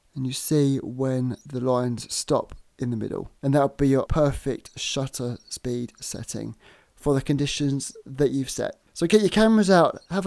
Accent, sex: British, male